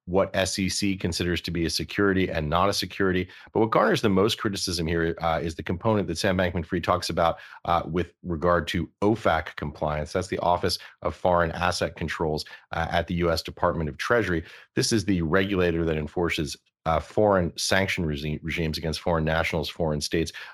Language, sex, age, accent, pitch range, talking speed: English, male, 40-59, American, 80-95 Hz, 180 wpm